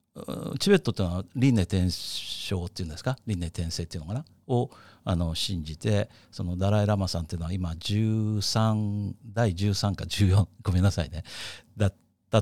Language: Japanese